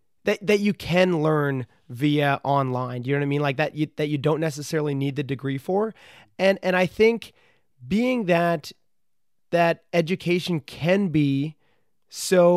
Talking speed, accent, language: 160 wpm, American, English